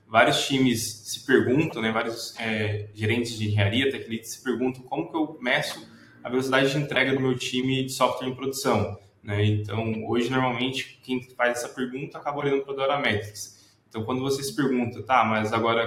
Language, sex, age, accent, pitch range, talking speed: Portuguese, male, 10-29, Brazilian, 110-135 Hz, 190 wpm